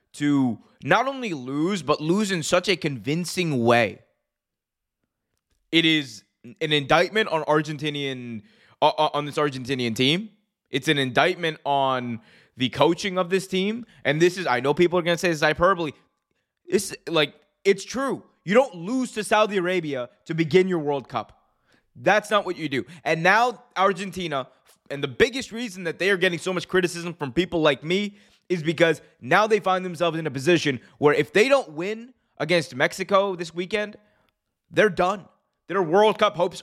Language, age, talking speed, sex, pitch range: English, 20-39, 170 wpm, male, 150-205 Hz